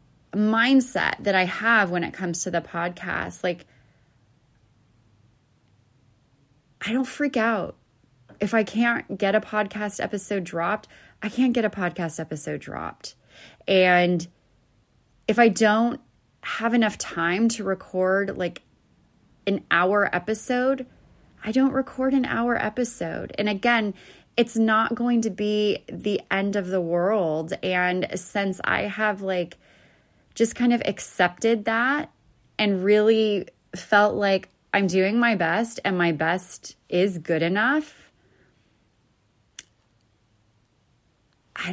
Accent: American